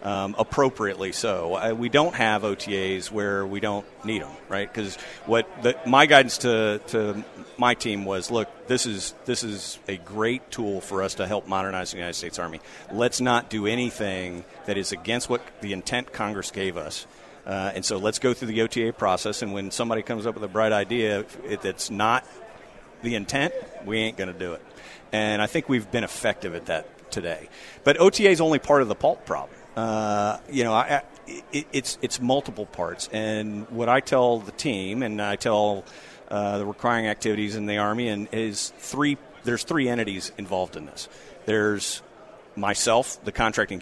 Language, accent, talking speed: English, American, 185 wpm